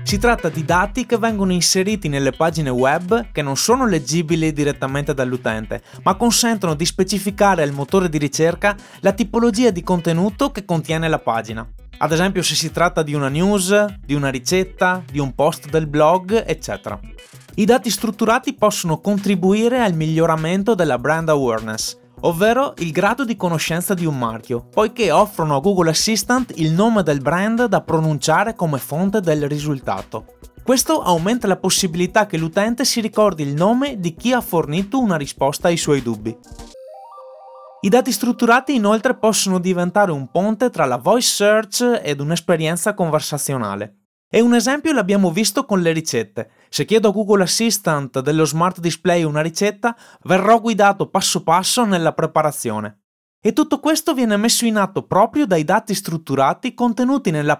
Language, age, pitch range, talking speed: Italian, 20-39, 150-215 Hz, 160 wpm